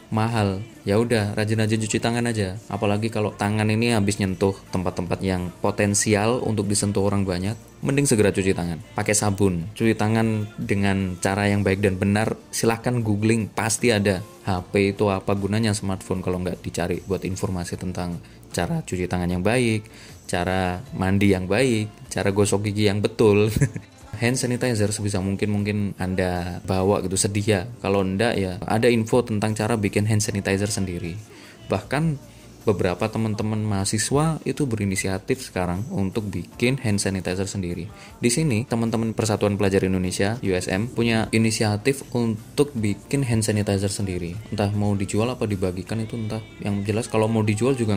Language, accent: Indonesian, native